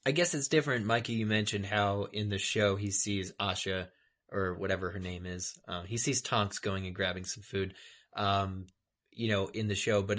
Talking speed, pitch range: 205 wpm, 100-120 Hz